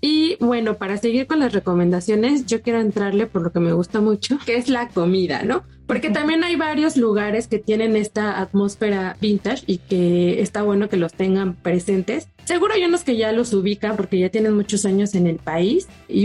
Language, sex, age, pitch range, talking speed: Spanish, female, 30-49, 190-225 Hz, 205 wpm